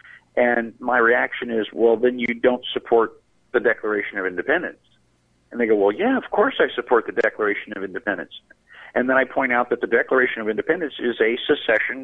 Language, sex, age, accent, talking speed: English, male, 50-69, American, 195 wpm